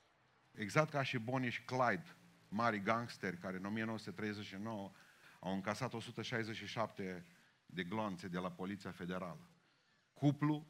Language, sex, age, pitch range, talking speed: Romanian, male, 40-59, 110-140 Hz, 120 wpm